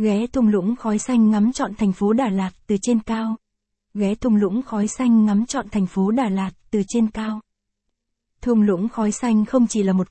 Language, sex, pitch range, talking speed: Vietnamese, female, 195-235 Hz, 215 wpm